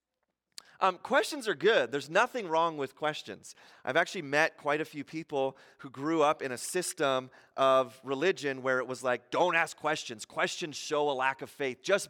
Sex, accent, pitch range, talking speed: male, American, 160-230 Hz, 190 wpm